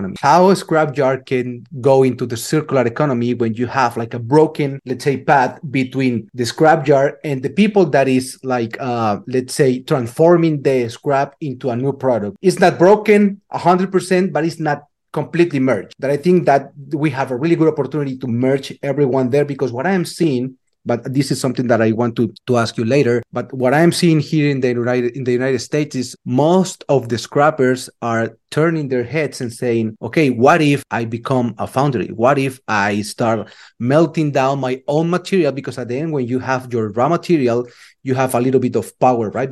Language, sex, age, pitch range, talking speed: English, male, 30-49, 125-155 Hz, 205 wpm